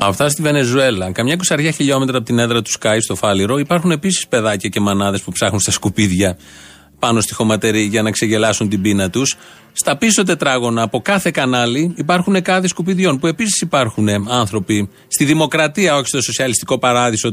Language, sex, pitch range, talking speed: Greek, male, 115-170 Hz, 175 wpm